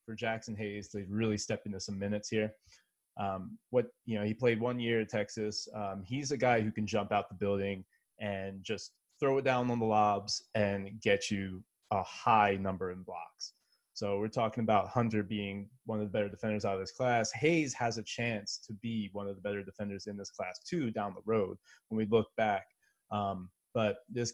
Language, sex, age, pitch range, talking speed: English, male, 20-39, 105-115 Hz, 210 wpm